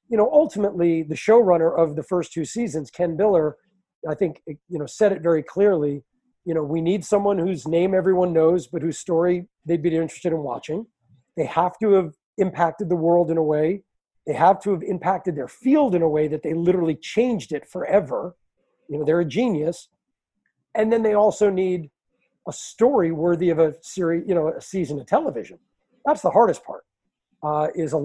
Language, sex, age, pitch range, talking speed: English, male, 40-59, 160-205 Hz, 195 wpm